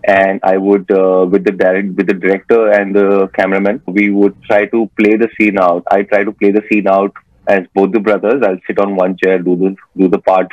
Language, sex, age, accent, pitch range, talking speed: English, male, 20-39, Indian, 95-110 Hz, 240 wpm